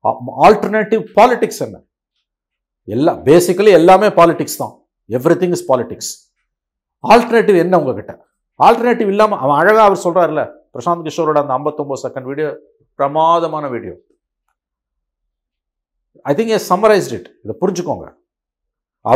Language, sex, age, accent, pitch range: Tamil, male, 50-69, native, 120-160 Hz